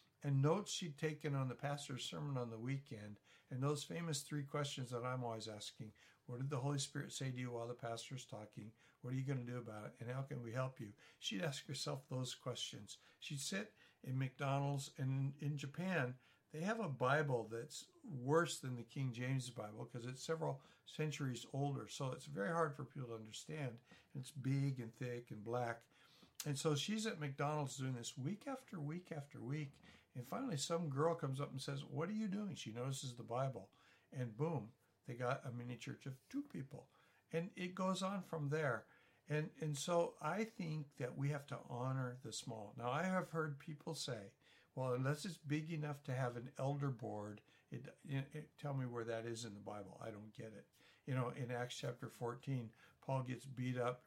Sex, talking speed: male, 205 wpm